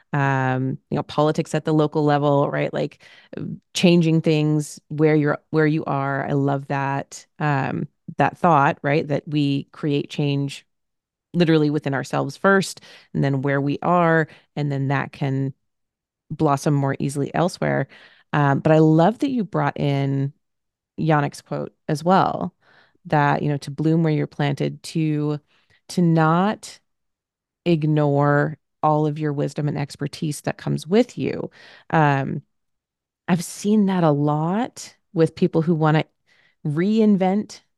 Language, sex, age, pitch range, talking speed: English, female, 30-49, 145-170 Hz, 145 wpm